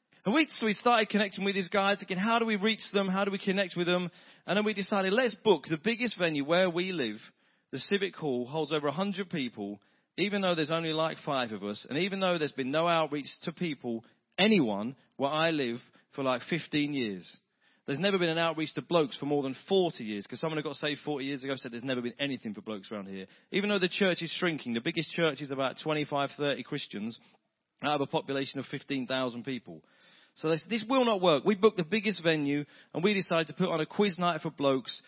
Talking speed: 230 wpm